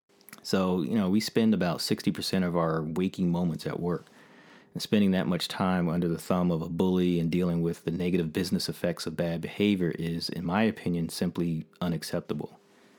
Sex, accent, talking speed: male, American, 185 wpm